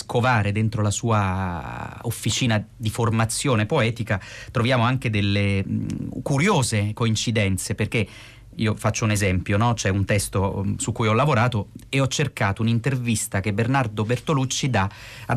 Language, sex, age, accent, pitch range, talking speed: Italian, male, 30-49, native, 105-130 Hz, 135 wpm